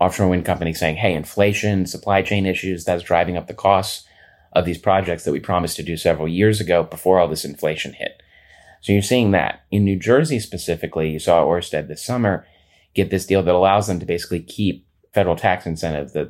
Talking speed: 210 wpm